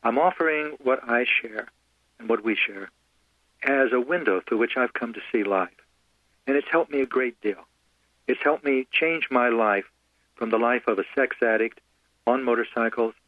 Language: English